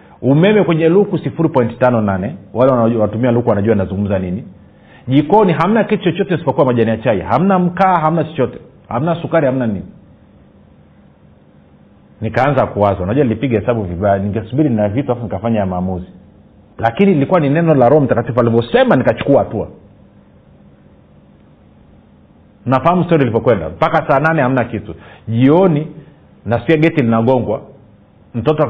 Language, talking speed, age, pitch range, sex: Swahili, 130 wpm, 40-59, 105-150 Hz, male